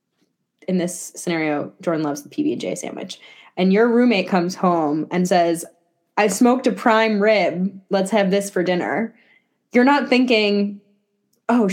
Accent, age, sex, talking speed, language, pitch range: American, 10-29, female, 150 wpm, English, 170-230 Hz